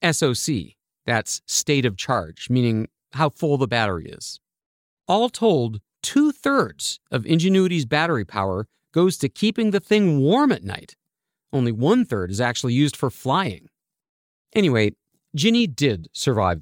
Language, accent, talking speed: English, American, 135 wpm